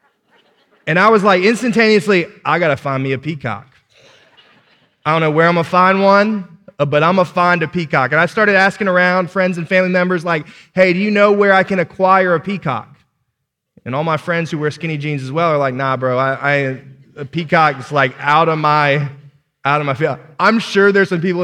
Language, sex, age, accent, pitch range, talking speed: English, male, 20-39, American, 135-185 Hz, 225 wpm